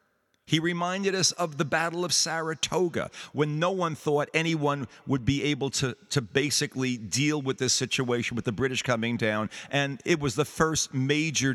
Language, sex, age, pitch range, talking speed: English, male, 50-69, 135-175 Hz, 175 wpm